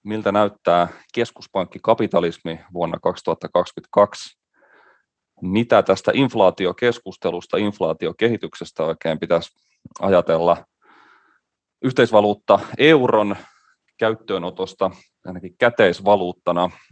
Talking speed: 60 wpm